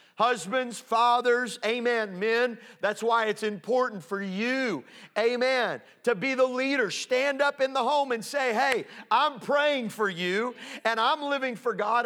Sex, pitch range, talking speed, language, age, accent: male, 195-240 Hz, 160 wpm, English, 40-59, American